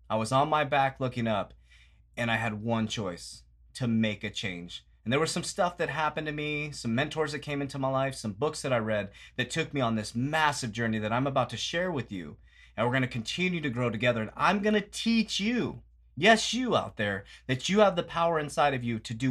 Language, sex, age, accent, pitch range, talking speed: English, male, 30-49, American, 110-150 Hz, 245 wpm